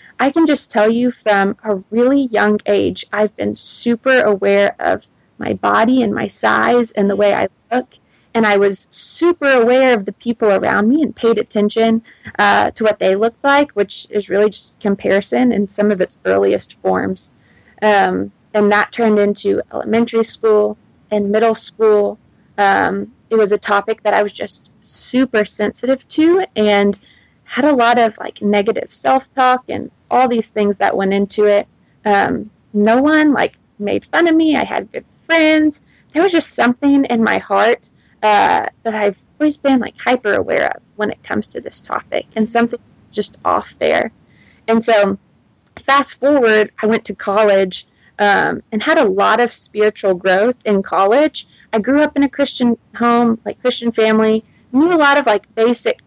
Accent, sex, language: American, female, English